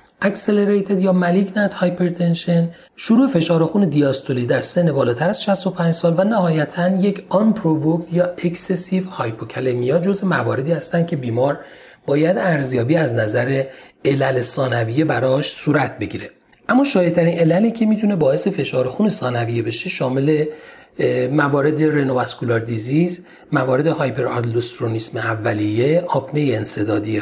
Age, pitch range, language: 40-59, 130-180 Hz, Persian